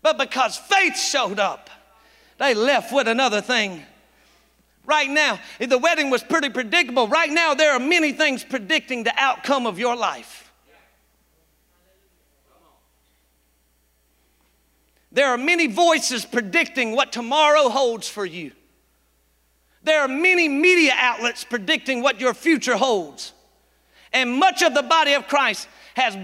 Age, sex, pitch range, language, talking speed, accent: 50-69, male, 235-340 Hz, English, 135 wpm, American